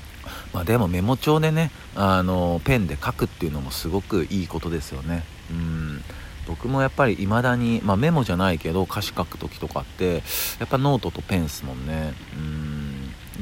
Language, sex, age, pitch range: Japanese, male, 50-69, 80-105 Hz